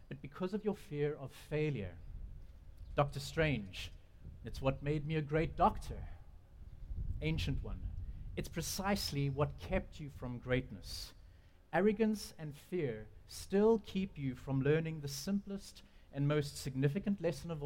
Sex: male